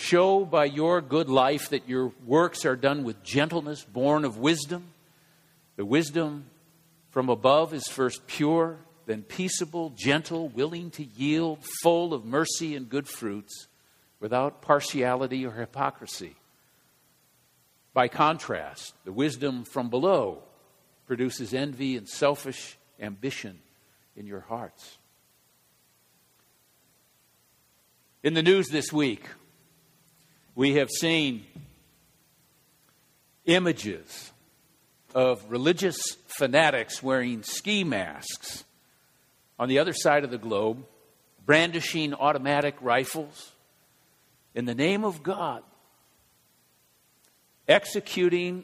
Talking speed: 100 wpm